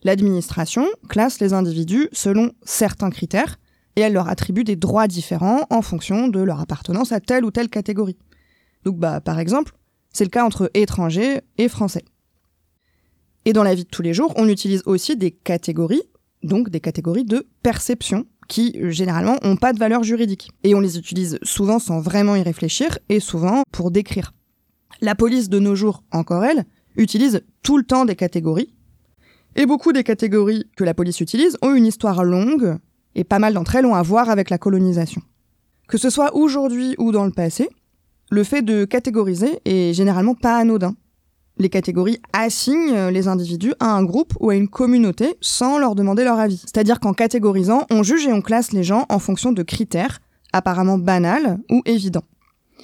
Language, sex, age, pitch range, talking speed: French, female, 20-39, 185-240 Hz, 180 wpm